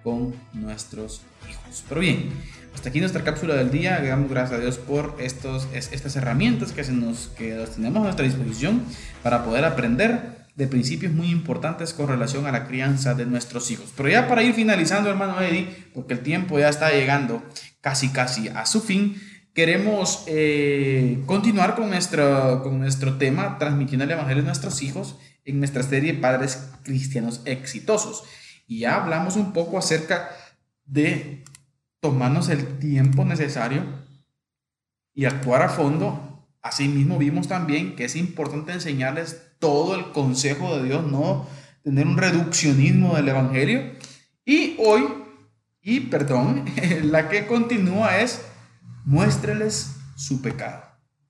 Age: 20-39